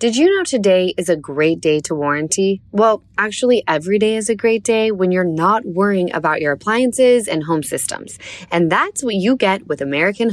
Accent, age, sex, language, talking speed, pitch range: American, 10-29, female, English, 205 wpm, 165-235 Hz